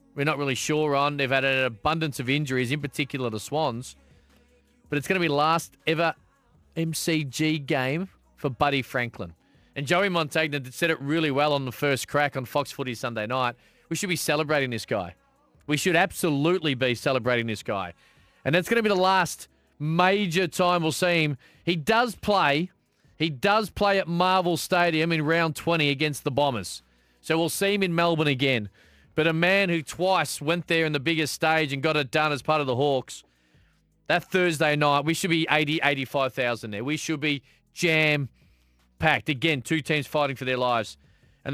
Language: English